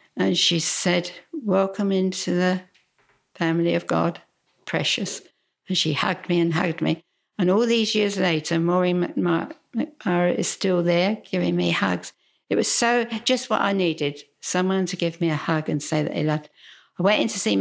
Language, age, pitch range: English, 60-79, 170-200 Hz